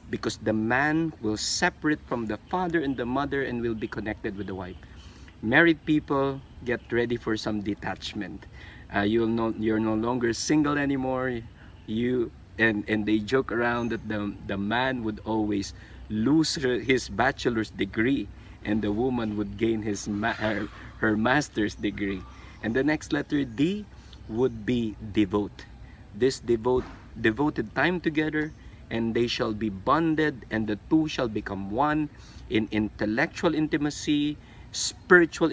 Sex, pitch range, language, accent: male, 105-135 Hz, Filipino, native